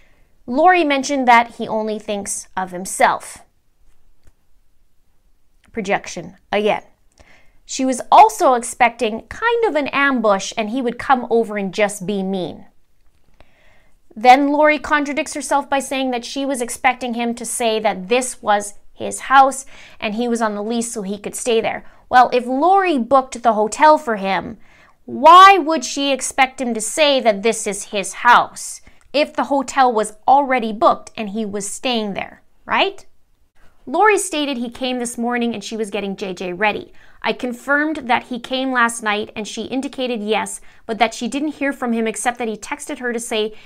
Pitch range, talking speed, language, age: 215-275 Hz, 170 wpm, English, 30-49